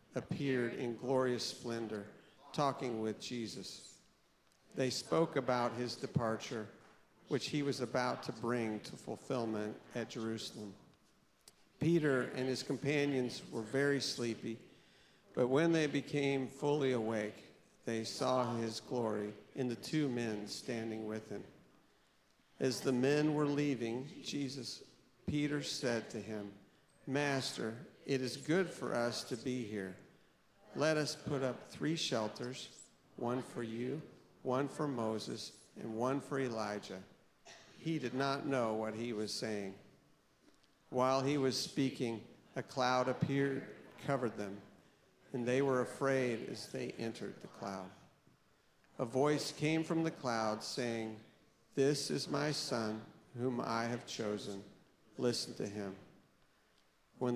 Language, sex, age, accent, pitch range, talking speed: English, male, 50-69, American, 115-140 Hz, 130 wpm